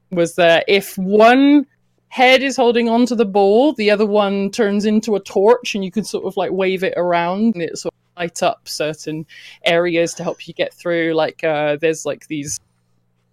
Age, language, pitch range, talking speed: 20-39, English, 150-200 Hz, 205 wpm